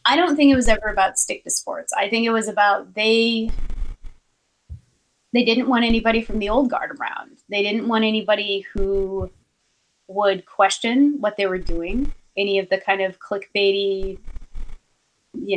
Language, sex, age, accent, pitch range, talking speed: English, female, 20-39, American, 185-225 Hz, 165 wpm